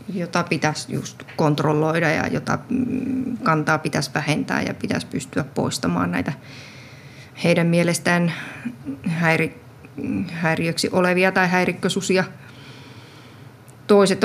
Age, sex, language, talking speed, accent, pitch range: 30-49, female, Finnish, 95 wpm, native, 140-190 Hz